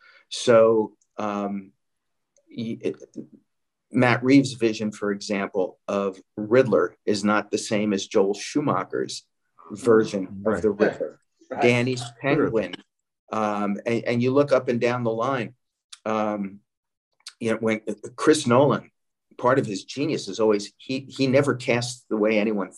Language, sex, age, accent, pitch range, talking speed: English, male, 40-59, American, 105-125 Hz, 140 wpm